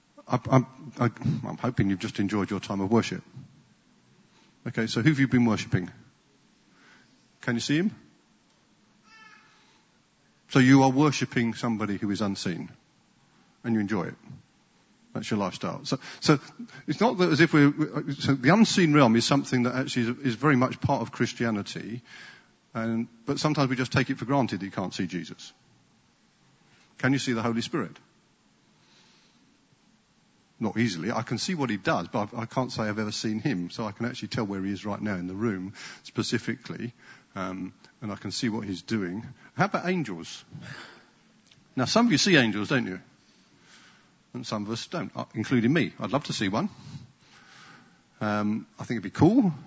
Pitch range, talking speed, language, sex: 110-145 Hz, 175 wpm, English, male